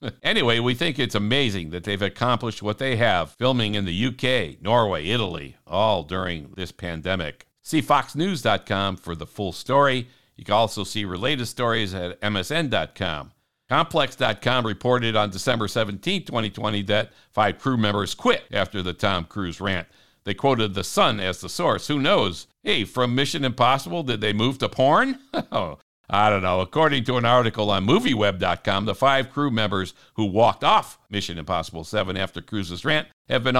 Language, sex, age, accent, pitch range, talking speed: English, male, 60-79, American, 95-130 Hz, 165 wpm